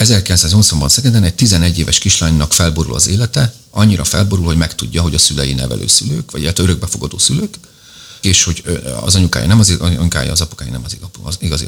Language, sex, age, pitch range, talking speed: Hungarian, male, 40-59, 85-105 Hz, 170 wpm